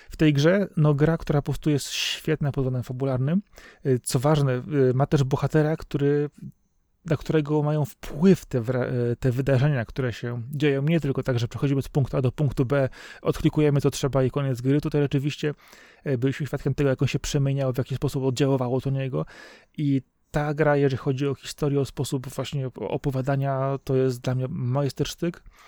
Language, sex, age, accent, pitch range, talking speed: Polish, male, 30-49, native, 130-150 Hz, 180 wpm